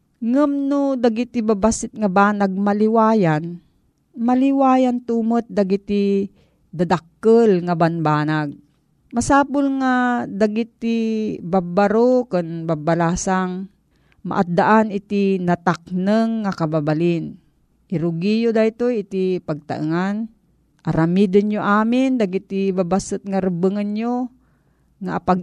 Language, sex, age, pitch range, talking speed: Filipino, female, 40-59, 180-225 Hz, 95 wpm